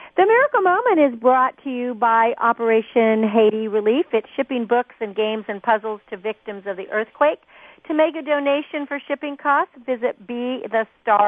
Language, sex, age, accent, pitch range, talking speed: English, female, 50-69, American, 220-275 Hz, 165 wpm